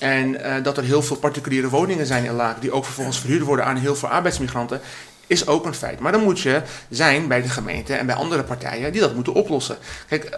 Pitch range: 135-165 Hz